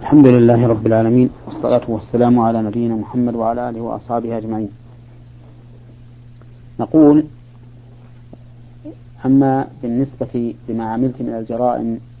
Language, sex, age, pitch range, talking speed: Arabic, male, 40-59, 120-125 Hz, 100 wpm